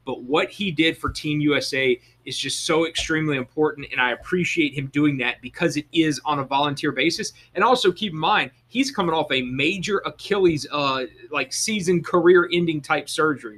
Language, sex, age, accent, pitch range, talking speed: English, male, 30-49, American, 135-170 Hz, 185 wpm